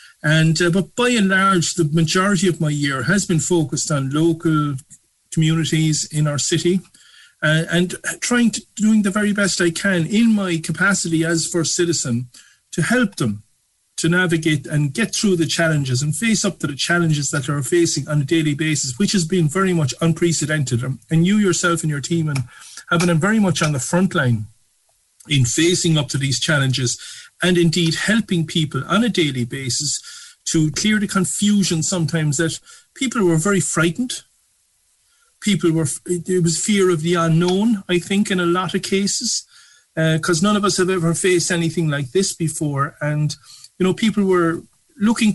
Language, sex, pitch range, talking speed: English, male, 155-190 Hz, 180 wpm